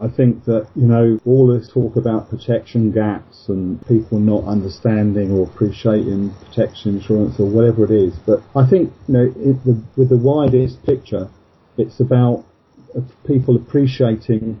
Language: English